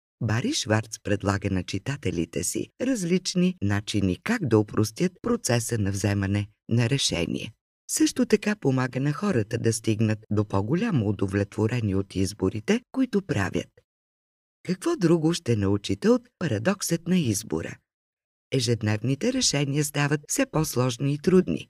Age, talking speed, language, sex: 50-69, 125 wpm, Bulgarian, female